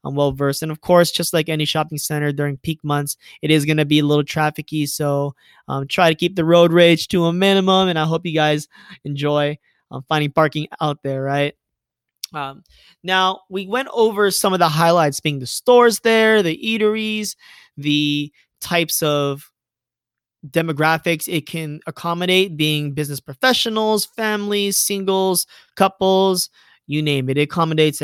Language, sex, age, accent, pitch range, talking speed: English, male, 20-39, American, 145-185 Hz, 165 wpm